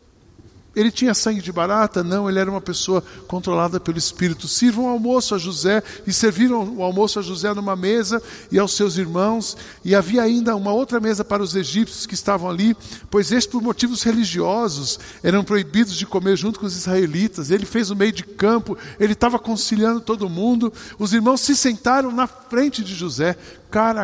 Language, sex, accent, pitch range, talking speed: Portuguese, male, Brazilian, 190-240 Hz, 185 wpm